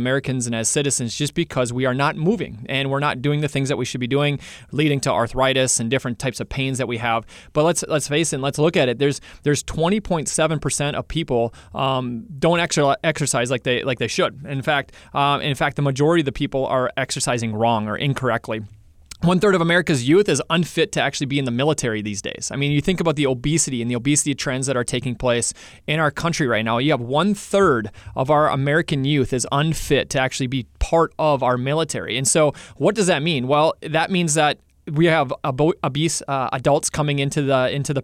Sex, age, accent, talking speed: male, 30-49, American, 220 wpm